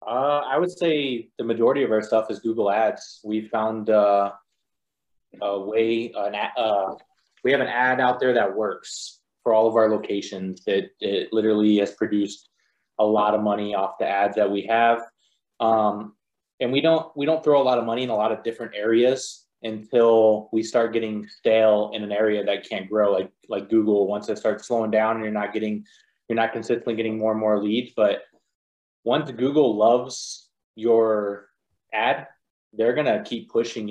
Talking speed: 190 wpm